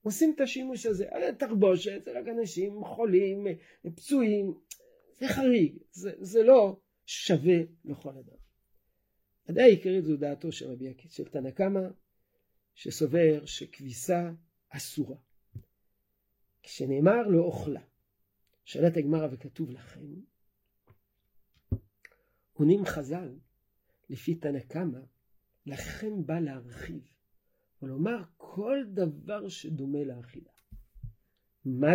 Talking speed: 95 wpm